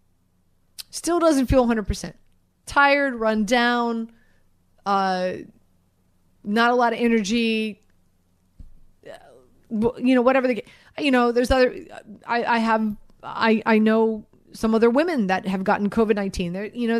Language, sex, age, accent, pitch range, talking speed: English, female, 30-49, American, 200-240 Hz, 135 wpm